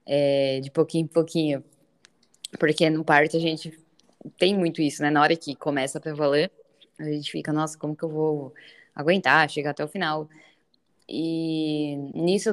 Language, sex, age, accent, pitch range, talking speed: Portuguese, female, 10-29, Brazilian, 155-190 Hz, 170 wpm